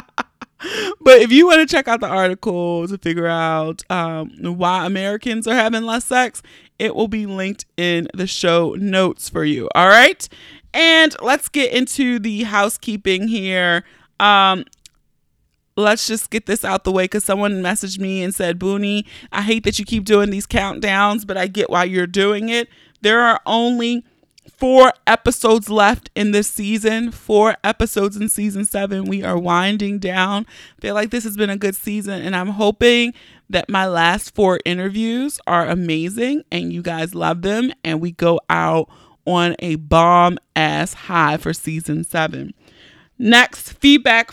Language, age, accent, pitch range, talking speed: English, 30-49, American, 175-215 Hz, 165 wpm